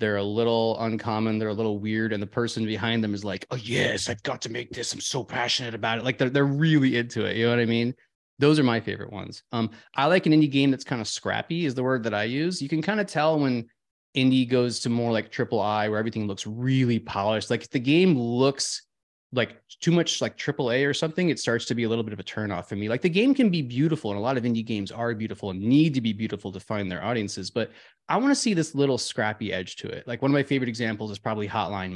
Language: English